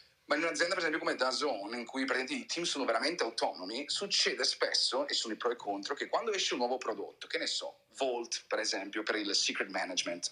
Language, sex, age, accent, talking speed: Italian, male, 30-49, native, 235 wpm